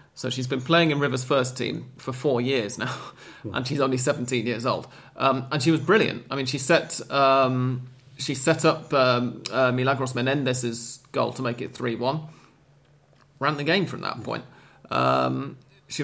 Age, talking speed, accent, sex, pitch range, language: 30-49, 180 wpm, British, male, 120-140 Hz, English